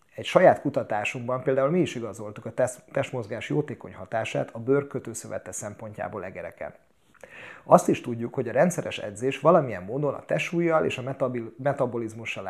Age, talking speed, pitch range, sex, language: 30-49, 140 wpm, 115-140 Hz, male, Hungarian